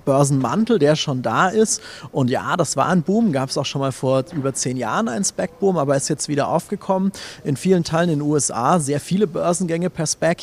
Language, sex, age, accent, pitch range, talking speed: German, male, 30-49, German, 145-180 Hz, 220 wpm